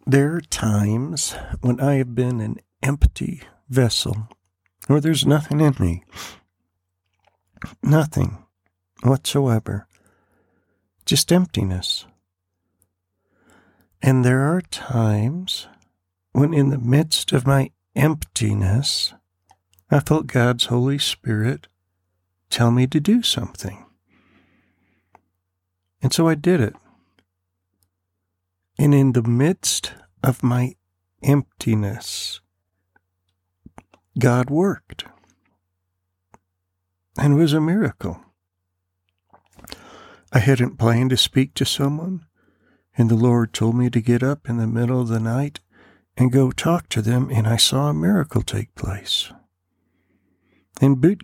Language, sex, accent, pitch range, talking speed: English, male, American, 90-135 Hz, 110 wpm